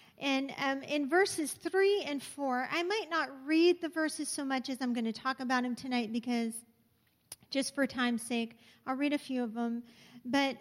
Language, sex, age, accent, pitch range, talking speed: English, female, 40-59, American, 245-310 Hz, 200 wpm